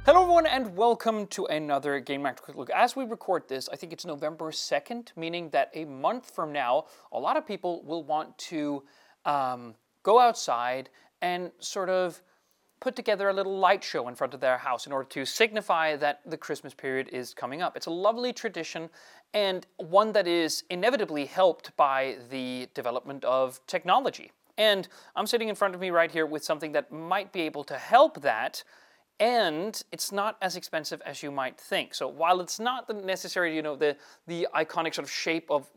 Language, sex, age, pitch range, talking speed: English, male, 30-49, 150-200 Hz, 195 wpm